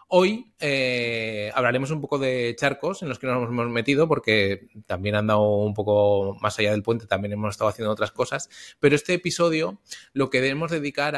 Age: 20-39